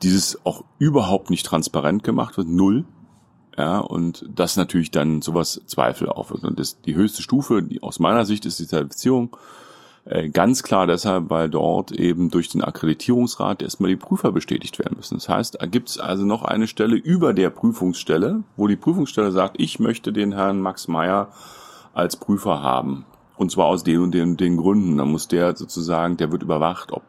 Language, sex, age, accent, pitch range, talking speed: German, male, 40-59, German, 85-115 Hz, 190 wpm